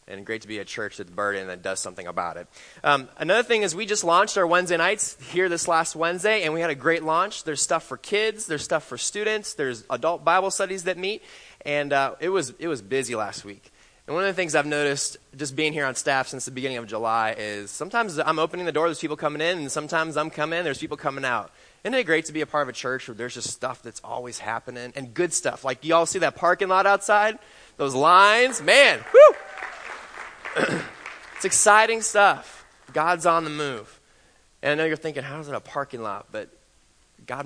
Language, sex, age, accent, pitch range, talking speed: English, male, 20-39, American, 125-170 Hz, 225 wpm